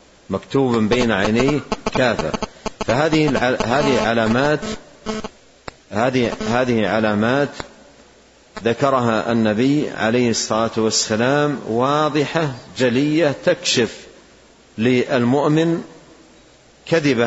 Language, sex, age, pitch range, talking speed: Arabic, male, 50-69, 115-145 Hz, 70 wpm